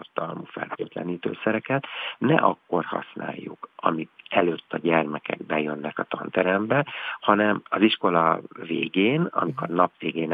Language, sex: Hungarian, male